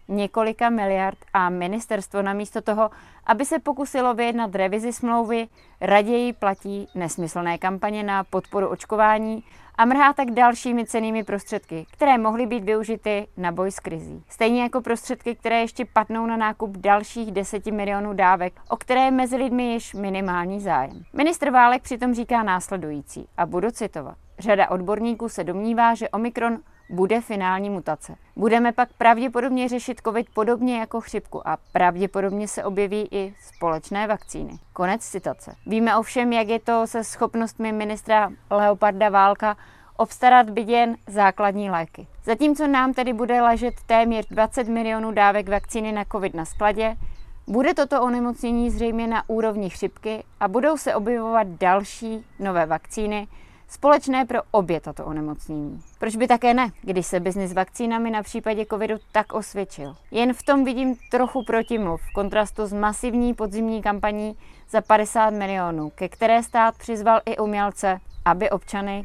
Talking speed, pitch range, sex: 150 wpm, 200-235 Hz, female